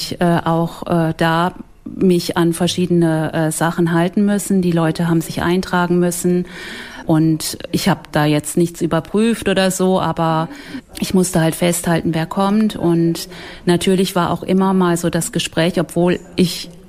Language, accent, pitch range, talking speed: German, German, 165-185 Hz, 155 wpm